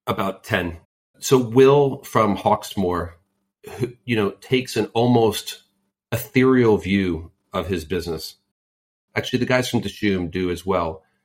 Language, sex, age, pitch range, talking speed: English, male, 40-59, 95-115 Hz, 130 wpm